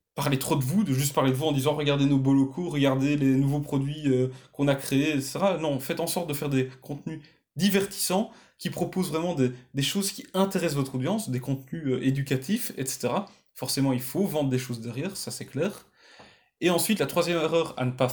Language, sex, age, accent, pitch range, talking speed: French, male, 20-39, French, 130-170 Hz, 220 wpm